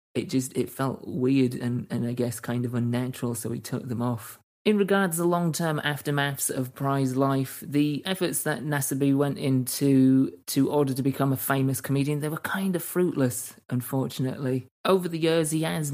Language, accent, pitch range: English, British, 125-145 Hz